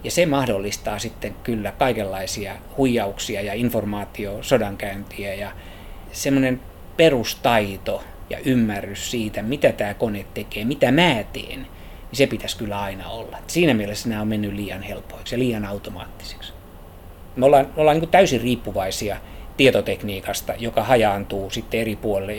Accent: native